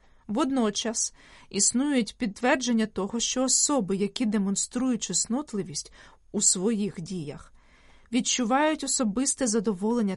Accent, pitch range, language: native, 195-245 Hz, Ukrainian